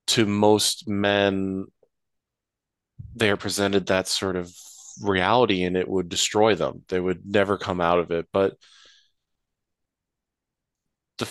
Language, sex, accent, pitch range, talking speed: English, male, American, 90-100 Hz, 125 wpm